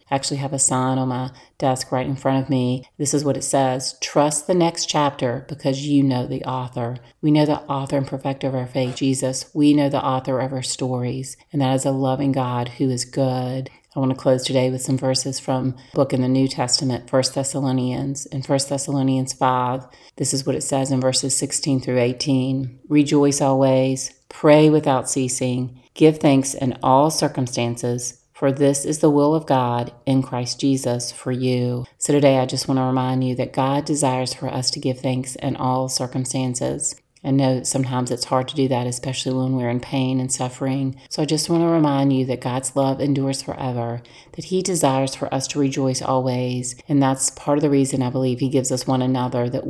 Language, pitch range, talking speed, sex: English, 130-140 Hz, 210 wpm, female